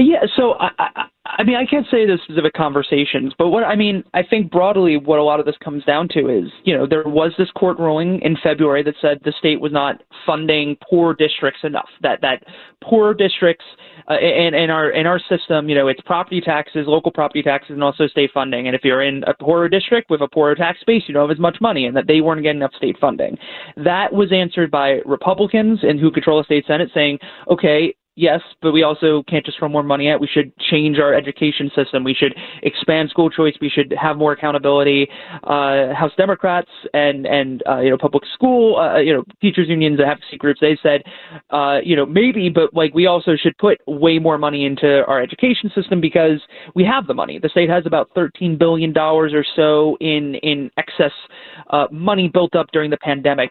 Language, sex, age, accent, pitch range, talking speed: English, male, 20-39, American, 145-175 Hz, 220 wpm